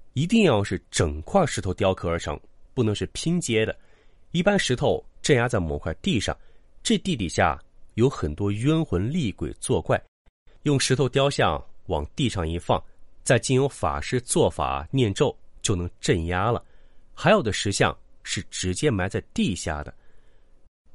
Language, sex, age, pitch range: Chinese, male, 30-49, 90-135 Hz